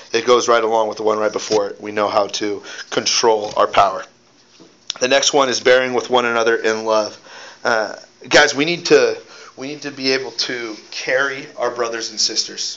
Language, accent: English, American